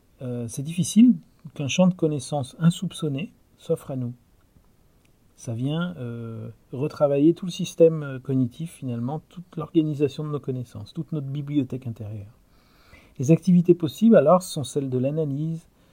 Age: 40-59